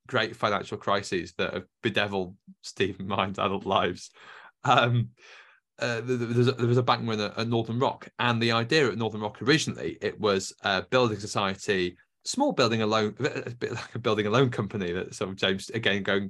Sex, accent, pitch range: male, British, 95-120 Hz